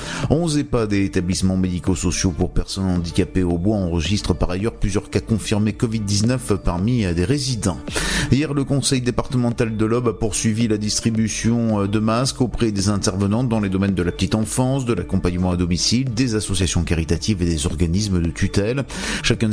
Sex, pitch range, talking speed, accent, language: male, 100-125 Hz, 170 wpm, French, French